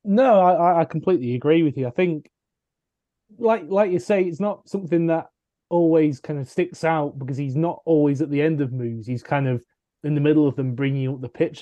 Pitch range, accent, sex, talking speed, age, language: 135-160 Hz, British, male, 220 wpm, 20-39, English